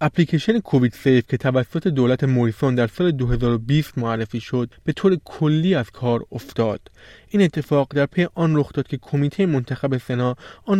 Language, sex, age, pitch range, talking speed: Persian, male, 20-39, 125-155 Hz, 165 wpm